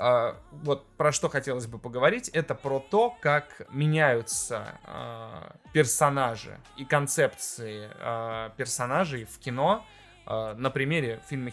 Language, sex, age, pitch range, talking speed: Russian, male, 20-39, 120-155 Hz, 105 wpm